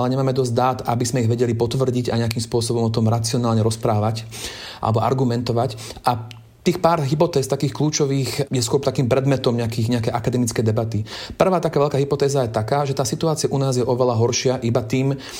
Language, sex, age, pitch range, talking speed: Slovak, male, 30-49, 115-135 Hz, 185 wpm